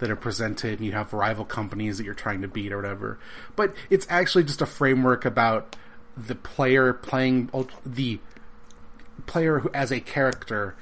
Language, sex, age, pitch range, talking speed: English, male, 30-49, 110-135 Hz, 165 wpm